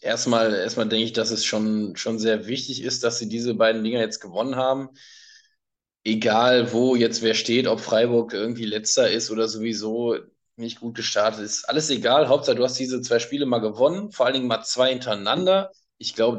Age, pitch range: 20-39, 110-130 Hz